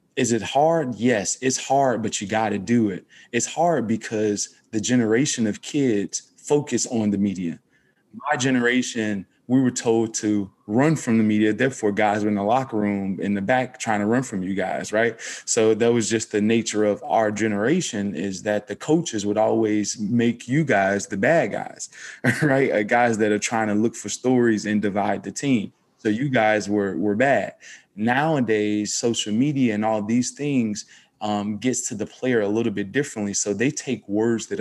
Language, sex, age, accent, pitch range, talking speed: English, male, 20-39, American, 105-125 Hz, 195 wpm